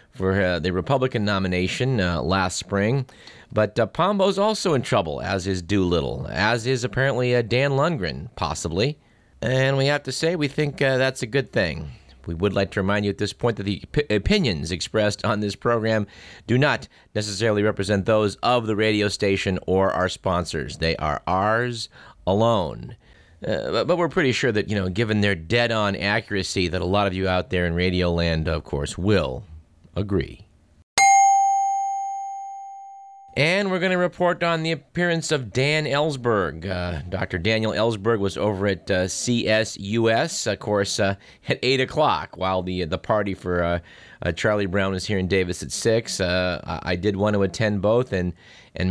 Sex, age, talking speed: male, 30-49, 180 wpm